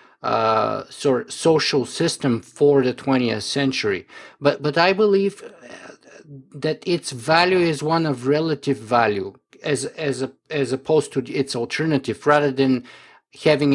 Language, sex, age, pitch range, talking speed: English, male, 50-69, 130-160 Hz, 135 wpm